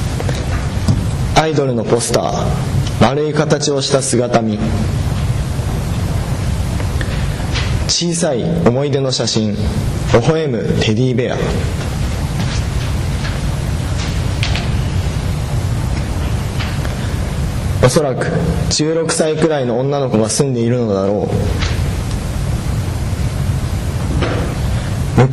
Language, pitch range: Japanese, 110-140 Hz